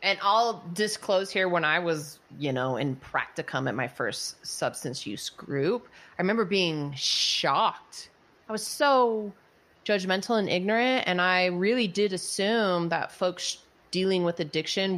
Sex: female